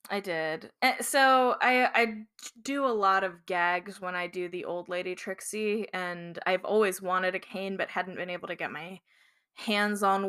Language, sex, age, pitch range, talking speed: English, female, 10-29, 185-225 Hz, 185 wpm